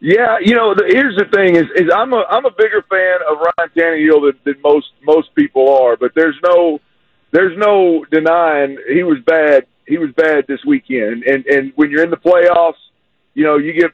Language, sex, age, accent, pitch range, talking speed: English, male, 40-59, American, 150-180 Hz, 210 wpm